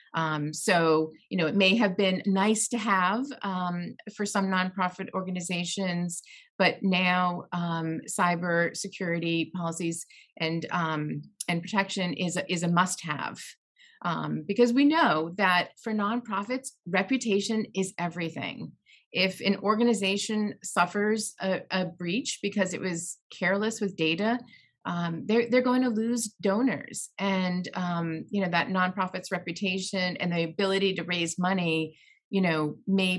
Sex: female